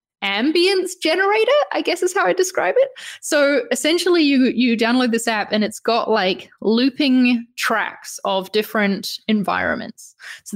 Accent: Australian